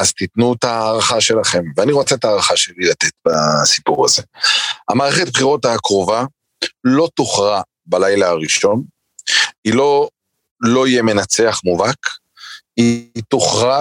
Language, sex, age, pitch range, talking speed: Hebrew, male, 40-59, 105-140 Hz, 120 wpm